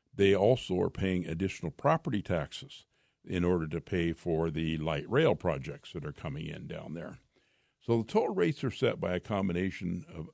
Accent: American